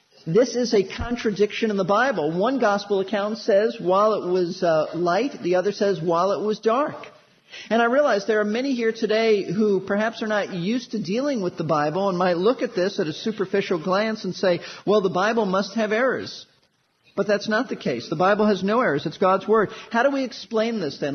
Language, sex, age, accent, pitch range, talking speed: English, male, 50-69, American, 190-240 Hz, 220 wpm